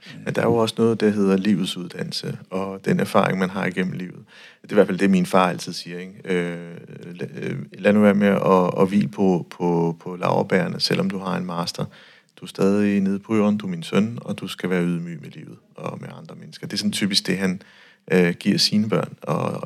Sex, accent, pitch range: male, native, 95-120 Hz